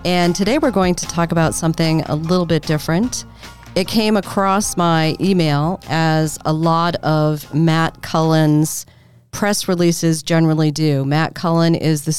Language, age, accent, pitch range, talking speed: English, 40-59, American, 150-175 Hz, 155 wpm